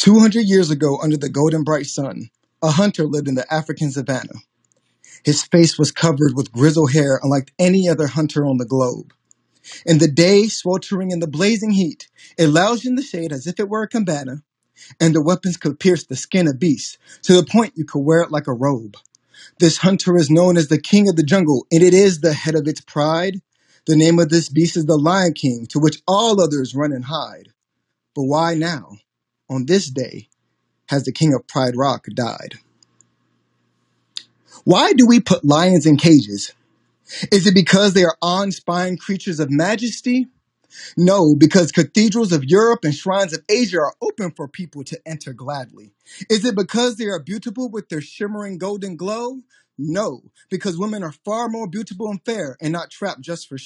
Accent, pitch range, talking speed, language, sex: American, 150-200 Hz, 190 wpm, English, male